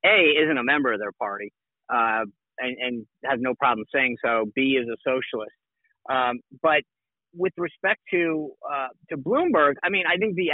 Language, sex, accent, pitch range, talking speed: English, male, American, 125-155 Hz, 180 wpm